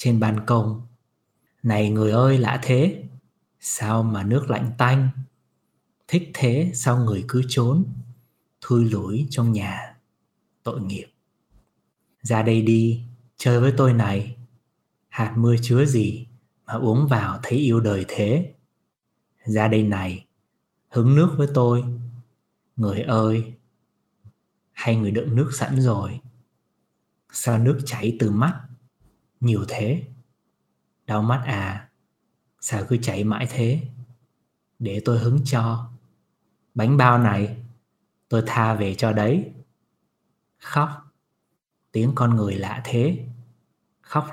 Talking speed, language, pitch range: 125 wpm, Vietnamese, 110-125 Hz